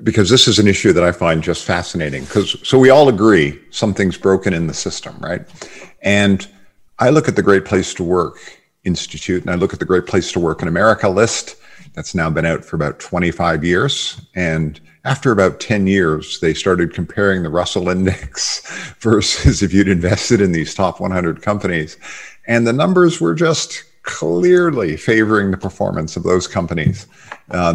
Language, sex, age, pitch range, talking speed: English, male, 50-69, 90-115 Hz, 180 wpm